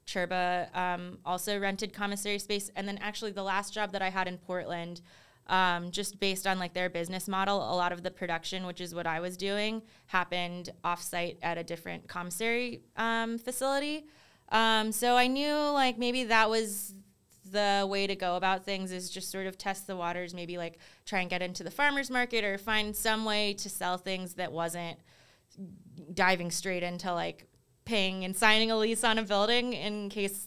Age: 20-39